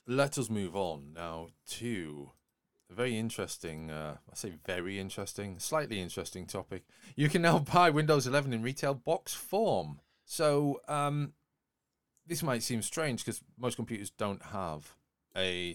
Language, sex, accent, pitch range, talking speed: English, male, British, 90-135 Hz, 150 wpm